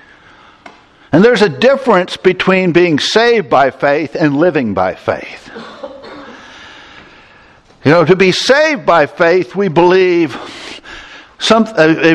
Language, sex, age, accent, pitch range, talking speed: English, male, 60-79, American, 175-245 Hz, 115 wpm